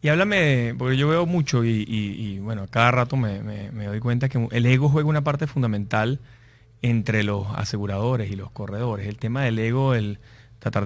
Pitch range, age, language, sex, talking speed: 115-135 Hz, 30-49, Spanish, male, 205 wpm